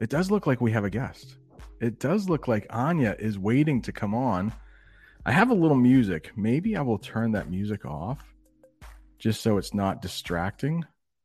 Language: English